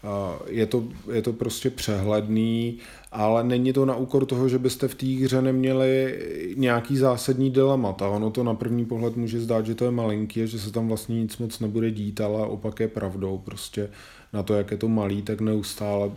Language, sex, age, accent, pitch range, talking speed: Czech, male, 20-39, native, 105-115 Hz, 195 wpm